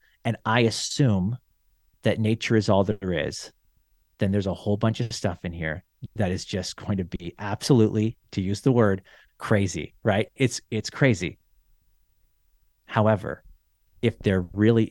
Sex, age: male, 30-49